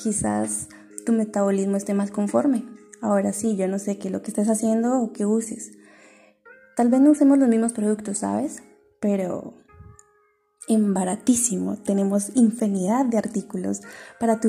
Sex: female